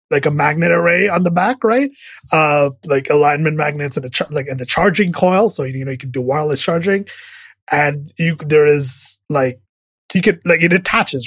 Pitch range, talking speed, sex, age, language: 130-170 Hz, 200 wpm, male, 20-39, English